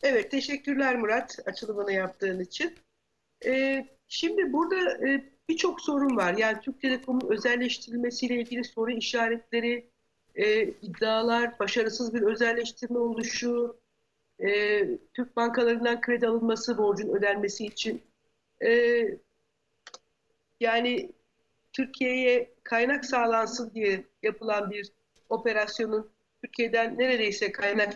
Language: Turkish